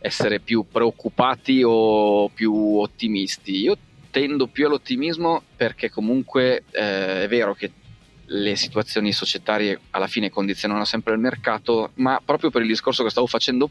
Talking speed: 145 wpm